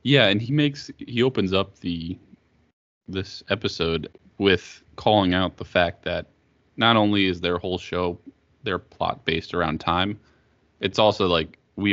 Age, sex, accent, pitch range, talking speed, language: 20-39, male, American, 85-100 Hz, 155 wpm, English